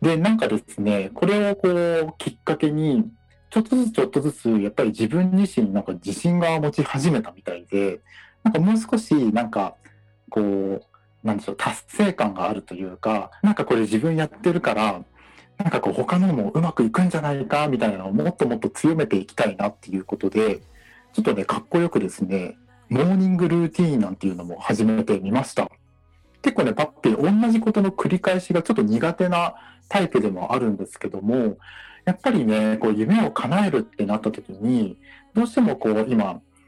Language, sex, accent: Japanese, male, native